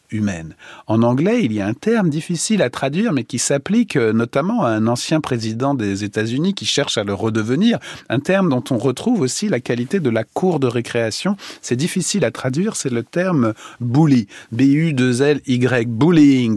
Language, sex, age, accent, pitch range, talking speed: French, male, 40-59, French, 115-165 Hz, 190 wpm